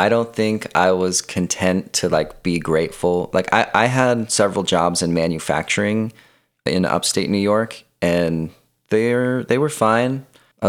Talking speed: 155 wpm